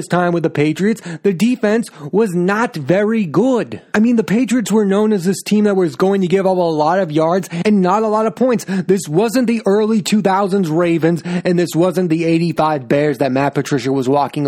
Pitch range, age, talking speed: 155-195 Hz, 30-49, 215 wpm